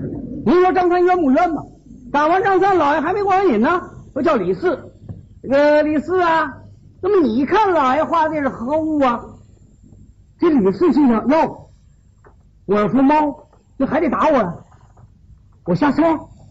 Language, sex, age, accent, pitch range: Chinese, male, 50-69, native, 265-355 Hz